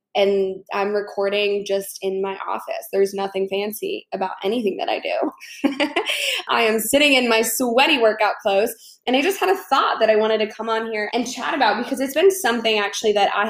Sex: female